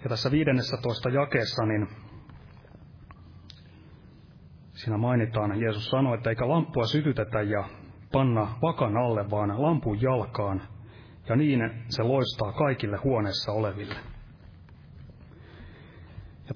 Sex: male